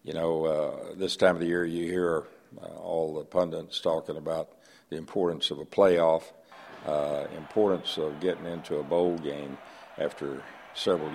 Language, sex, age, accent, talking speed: English, male, 60-79, American, 165 wpm